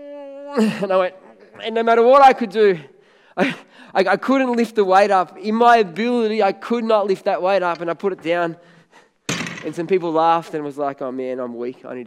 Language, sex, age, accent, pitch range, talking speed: English, male, 20-39, Australian, 190-220 Hz, 230 wpm